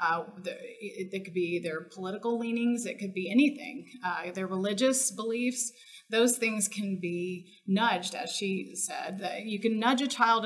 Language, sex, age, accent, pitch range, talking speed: English, female, 30-49, American, 190-240 Hz, 160 wpm